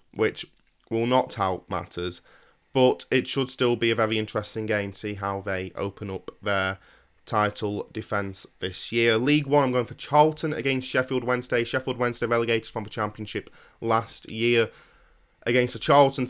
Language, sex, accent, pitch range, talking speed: English, male, British, 105-125 Hz, 165 wpm